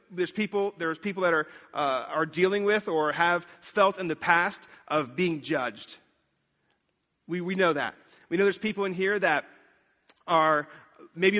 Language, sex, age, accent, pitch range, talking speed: English, male, 30-49, American, 165-205 Hz, 170 wpm